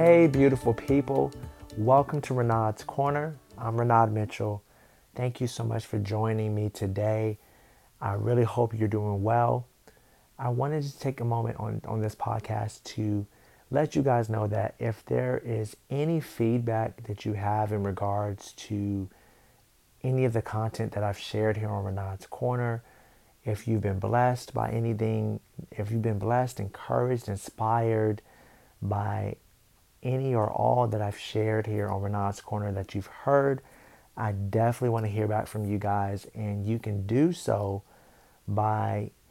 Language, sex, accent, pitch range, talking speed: English, male, American, 105-120 Hz, 155 wpm